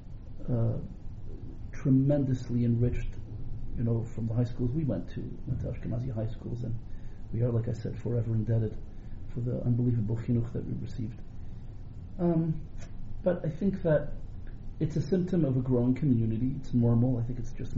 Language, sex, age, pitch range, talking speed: English, male, 40-59, 110-125 Hz, 165 wpm